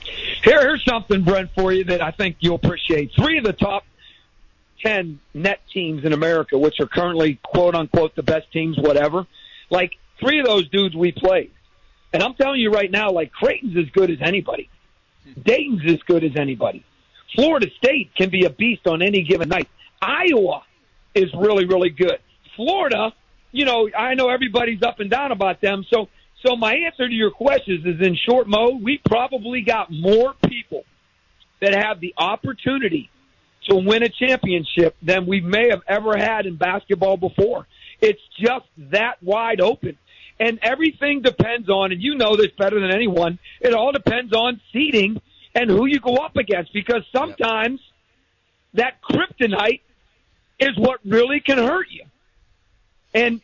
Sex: male